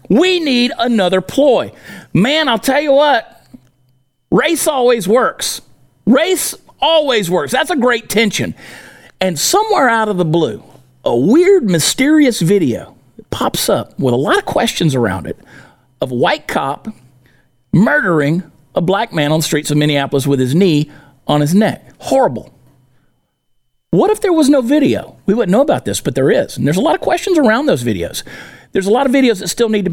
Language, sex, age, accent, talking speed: English, male, 50-69, American, 180 wpm